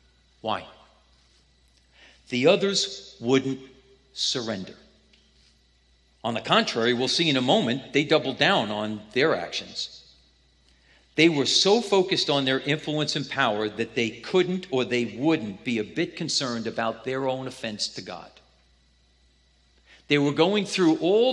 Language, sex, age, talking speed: English, male, 50-69, 140 wpm